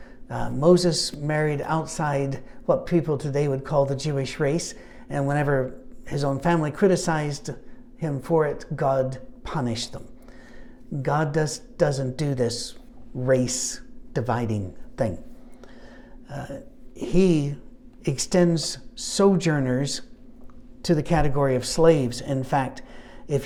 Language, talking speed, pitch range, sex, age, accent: English, 115 wpm, 140-180 Hz, male, 60-79, American